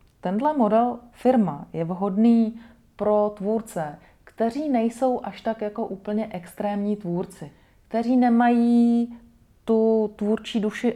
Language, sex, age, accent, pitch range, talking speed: Czech, female, 30-49, native, 175-210 Hz, 110 wpm